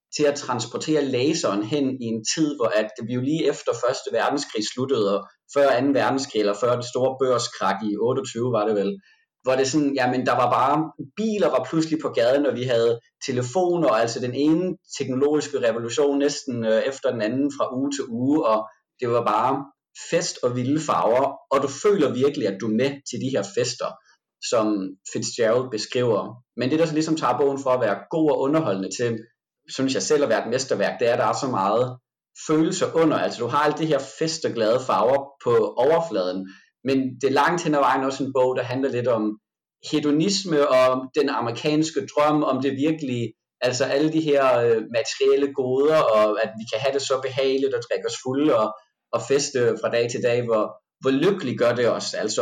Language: Danish